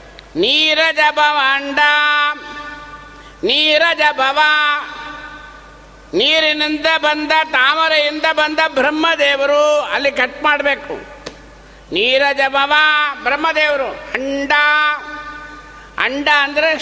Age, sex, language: 60-79, male, Kannada